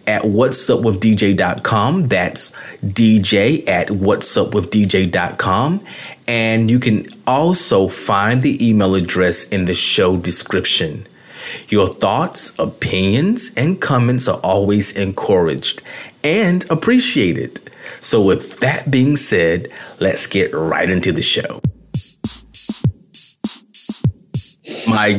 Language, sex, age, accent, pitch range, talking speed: English, male, 30-49, American, 90-120 Hz, 95 wpm